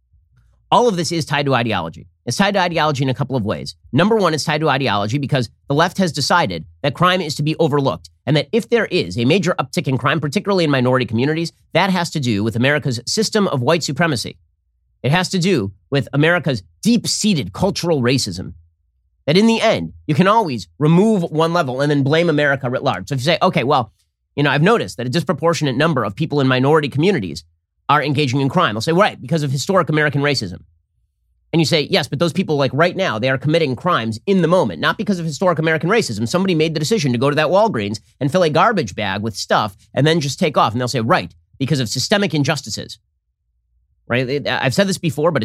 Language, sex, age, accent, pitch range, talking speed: English, male, 30-49, American, 115-170 Hz, 225 wpm